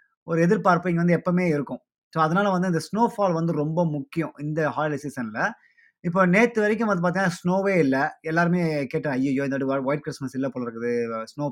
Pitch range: 145-195 Hz